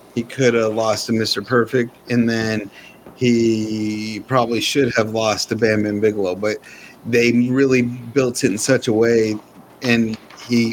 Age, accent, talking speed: 30-49, American, 160 wpm